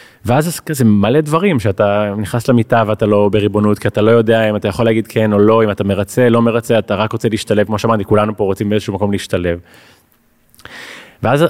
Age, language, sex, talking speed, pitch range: 30-49, Hebrew, male, 205 wpm, 105-130 Hz